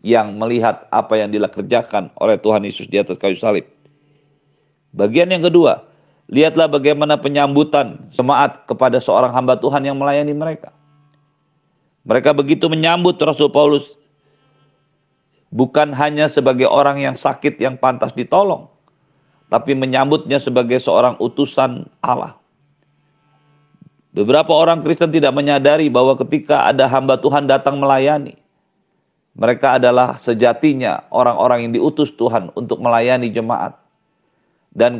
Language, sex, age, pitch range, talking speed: Indonesian, male, 50-69, 120-145 Hz, 120 wpm